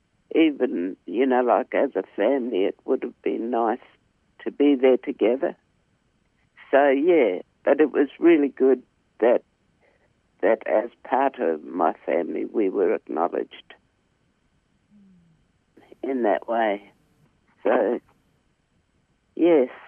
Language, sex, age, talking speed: English, male, 60-79, 115 wpm